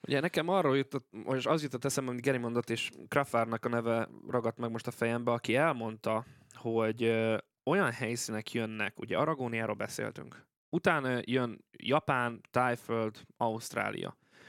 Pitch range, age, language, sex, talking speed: 115-135 Hz, 20-39, Hungarian, male, 140 wpm